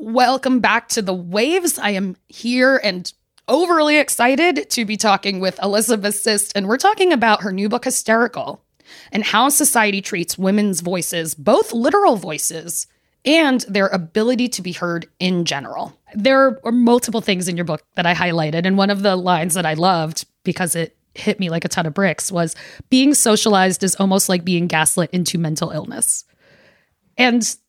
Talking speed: 175 wpm